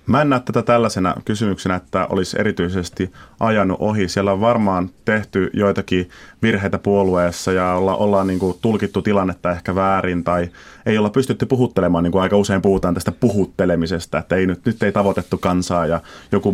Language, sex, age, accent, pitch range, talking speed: Finnish, male, 30-49, native, 95-110 Hz, 175 wpm